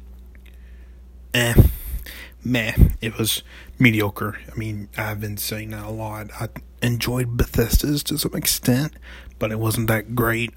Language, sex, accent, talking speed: English, male, American, 130 wpm